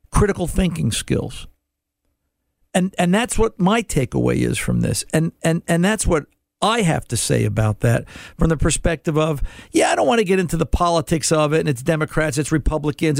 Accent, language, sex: American, English, male